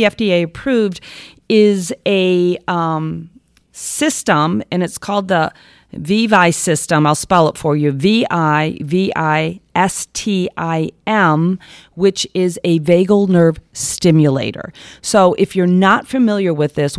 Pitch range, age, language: 160-200 Hz, 40-59, English